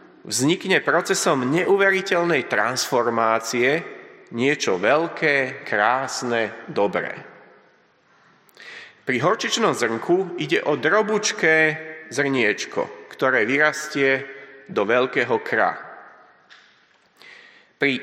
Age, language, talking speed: 30-49, Slovak, 70 wpm